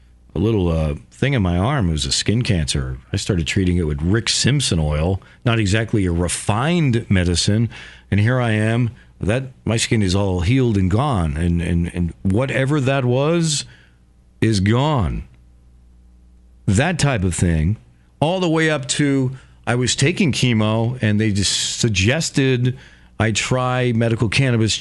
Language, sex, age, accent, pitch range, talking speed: English, male, 40-59, American, 85-135 Hz, 160 wpm